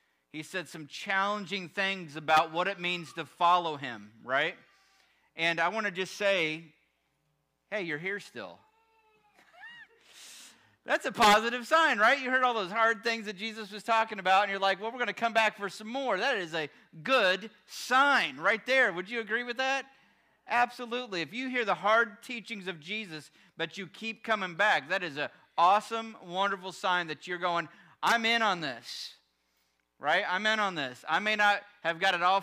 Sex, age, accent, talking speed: male, 40-59, American, 190 wpm